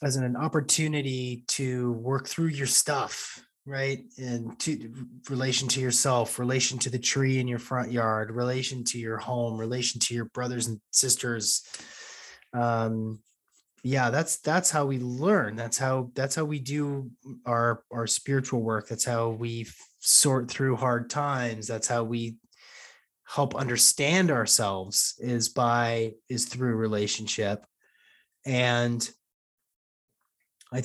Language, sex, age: English, male, 20-39